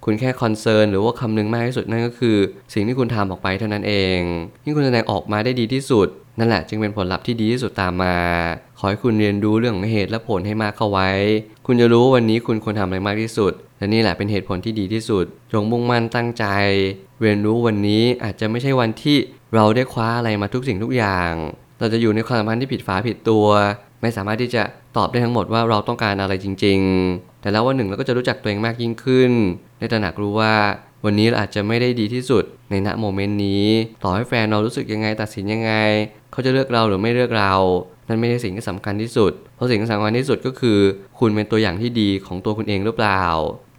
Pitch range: 100-120 Hz